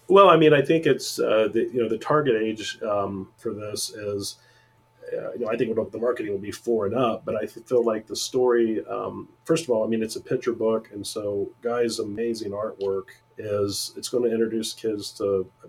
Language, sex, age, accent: English, male, 40-59, American